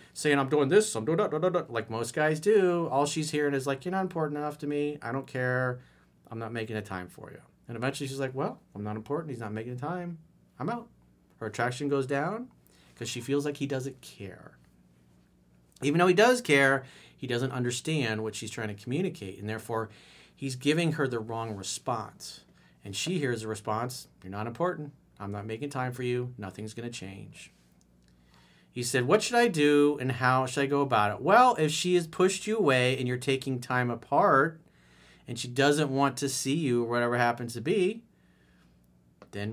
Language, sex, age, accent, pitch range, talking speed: English, male, 40-59, American, 110-150 Hz, 210 wpm